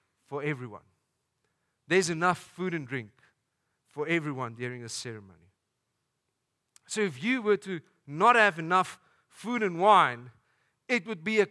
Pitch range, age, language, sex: 125-185 Hz, 50-69, English, male